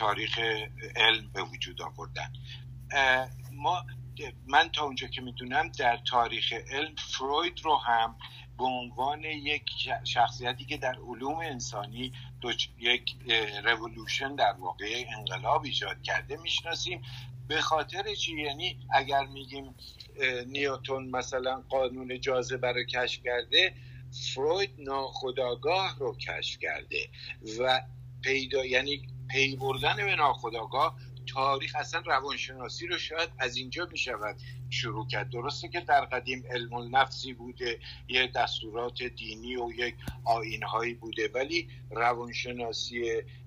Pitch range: 120-135 Hz